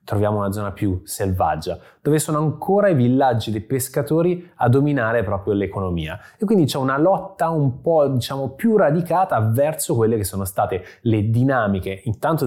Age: 20-39